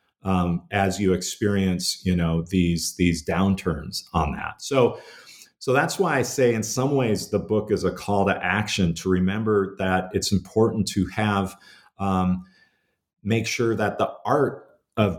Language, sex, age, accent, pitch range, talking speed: English, male, 40-59, American, 90-105 Hz, 160 wpm